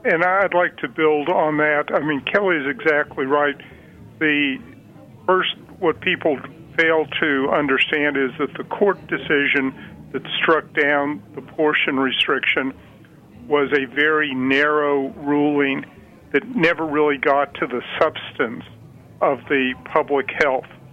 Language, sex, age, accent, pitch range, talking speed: English, male, 50-69, American, 135-155 Hz, 135 wpm